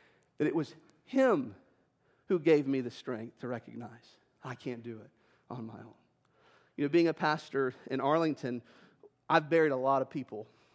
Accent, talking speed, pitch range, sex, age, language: American, 175 wpm, 140-195 Hz, male, 40-59, English